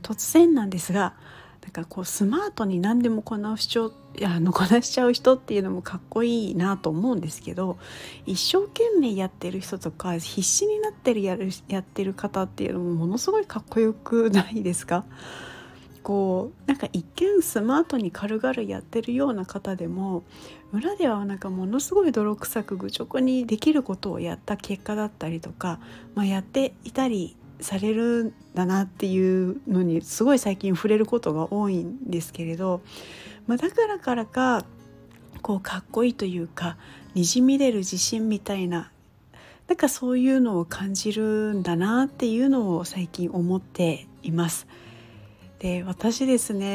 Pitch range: 185-245 Hz